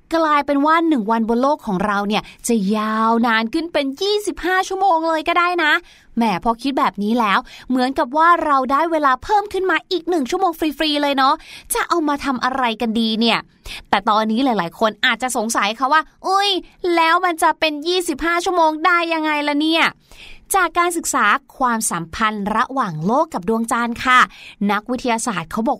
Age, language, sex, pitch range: 20-39, Thai, female, 230-330 Hz